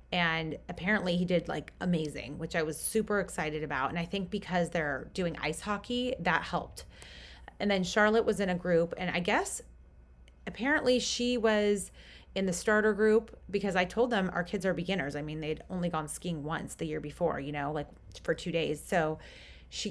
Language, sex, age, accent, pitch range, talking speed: English, female, 30-49, American, 160-205 Hz, 195 wpm